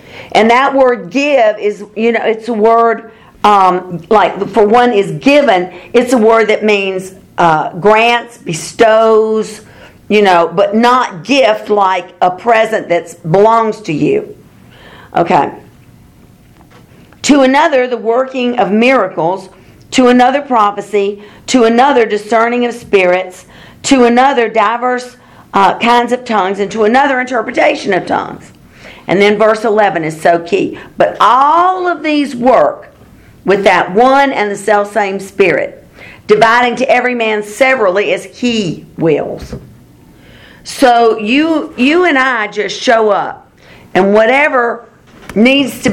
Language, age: English, 50-69